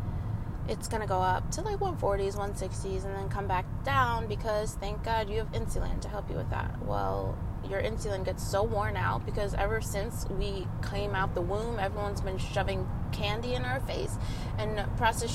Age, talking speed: 20-39, 190 wpm